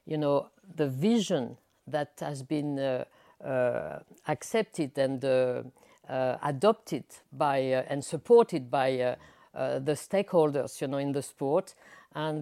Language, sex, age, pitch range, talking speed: English, female, 60-79, 150-185 Hz, 140 wpm